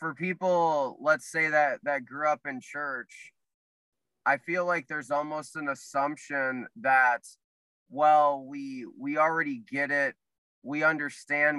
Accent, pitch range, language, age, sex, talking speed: American, 140-170 Hz, English, 20-39, male, 135 wpm